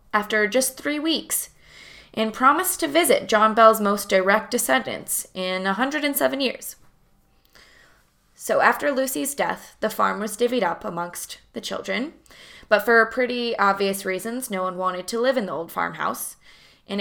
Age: 20-39